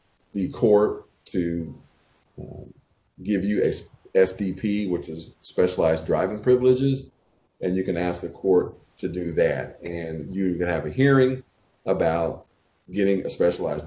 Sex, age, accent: male, 50-69, American